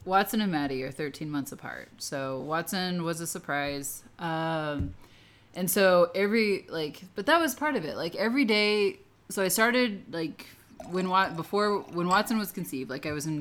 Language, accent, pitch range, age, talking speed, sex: English, American, 145-180 Hz, 20-39, 180 wpm, female